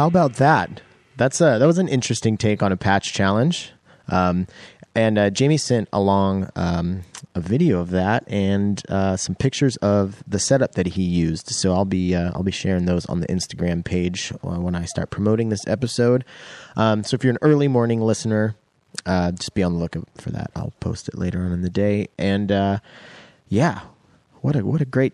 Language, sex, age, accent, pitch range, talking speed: English, male, 30-49, American, 90-115 Hz, 205 wpm